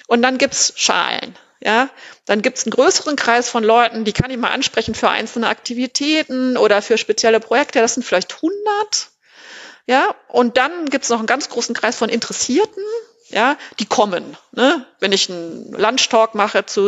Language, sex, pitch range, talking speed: German, female, 195-260 Hz, 185 wpm